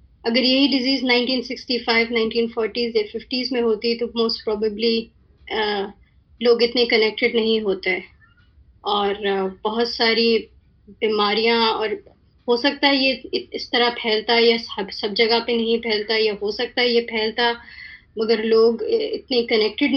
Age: 30-49